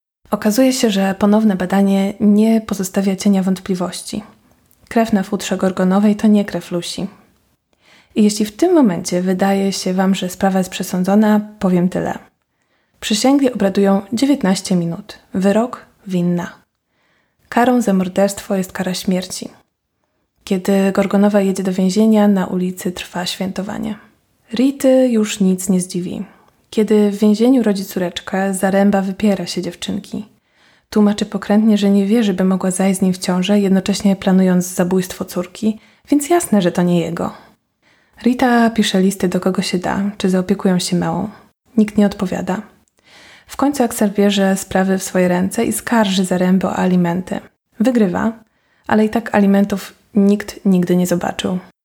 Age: 20-39